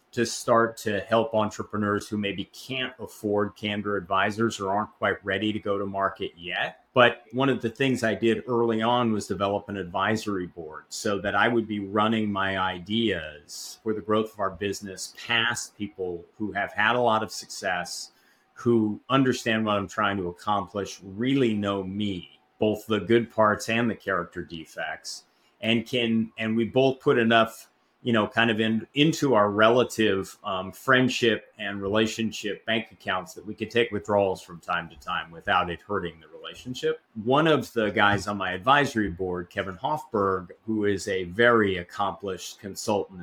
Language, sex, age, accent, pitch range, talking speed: English, male, 30-49, American, 95-115 Hz, 175 wpm